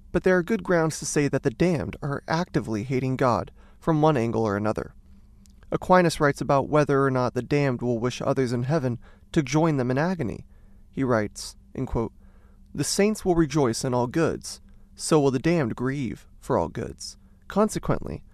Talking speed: 185 wpm